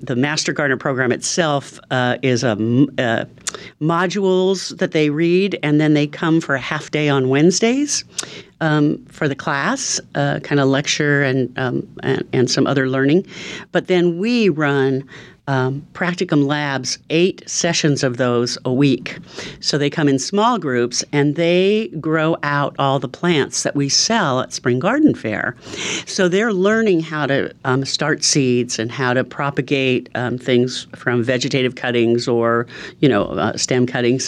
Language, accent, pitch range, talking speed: English, American, 125-170 Hz, 165 wpm